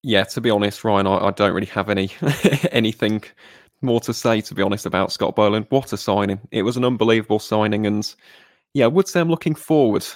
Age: 20-39